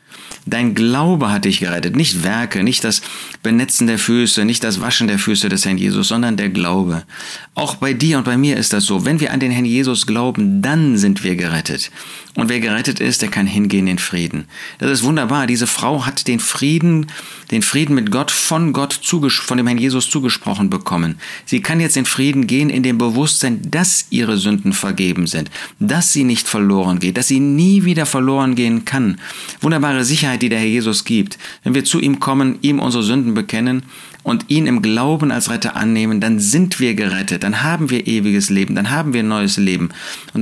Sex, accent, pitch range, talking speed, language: male, German, 100-140 Hz, 200 wpm, German